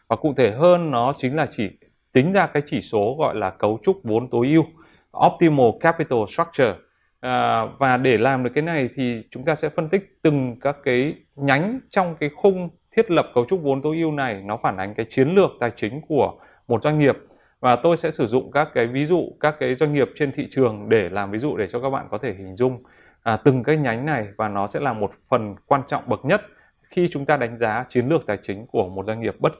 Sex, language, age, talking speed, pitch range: male, Vietnamese, 20-39, 240 wpm, 115-145 Hz